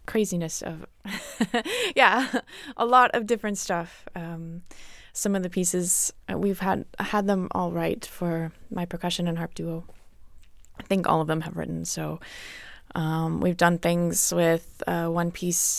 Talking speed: 155 wpm